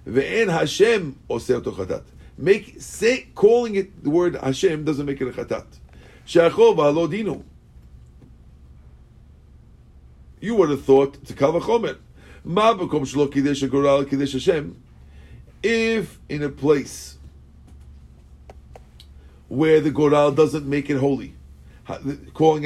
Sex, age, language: male, 50-69, English